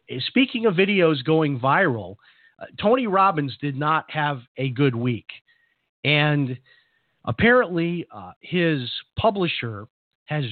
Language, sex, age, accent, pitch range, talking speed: English, male, 40-59, American, 125-160 Hz, 115 wpm